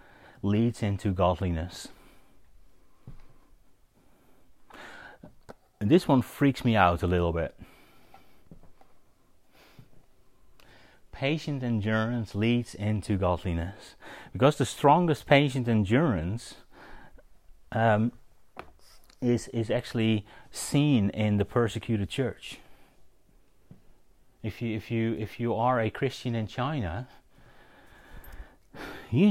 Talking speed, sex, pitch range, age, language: 90 wpm, male, 95-125 Hz, 30-49, English